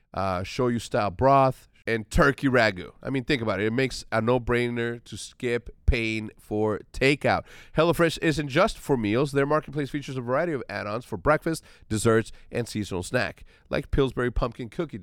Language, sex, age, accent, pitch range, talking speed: English, male, 40-59, American, 115-170 Hz, 175 wpm